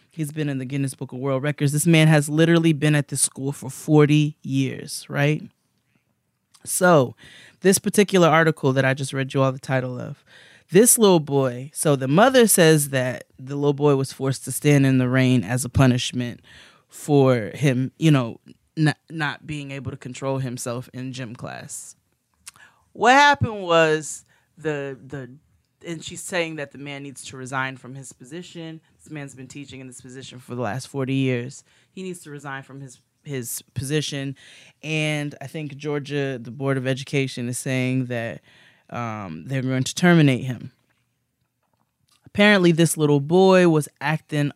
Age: 20-39